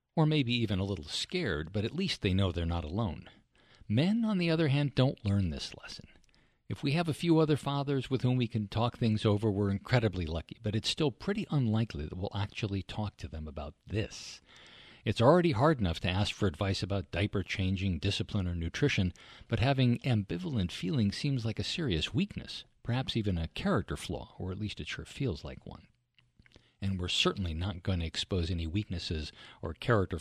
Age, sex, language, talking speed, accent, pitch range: 50-69, male, English, 200 wpm, American, 95-125 Hz